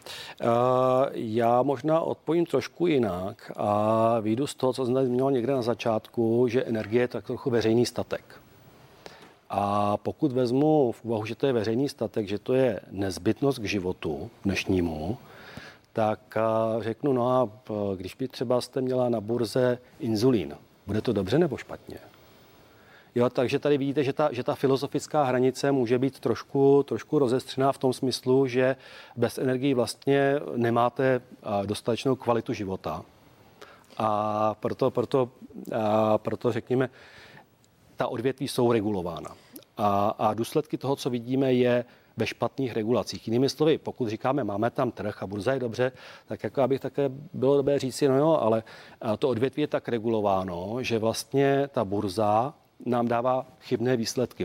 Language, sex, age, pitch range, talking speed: Czech, male, 40-59, 110-135 Hz, 150 wpm